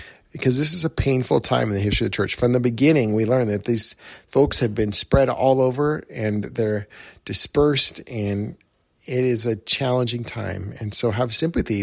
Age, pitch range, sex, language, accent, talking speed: 40-59, 105-130 Hz, male, English, American, 195 wpm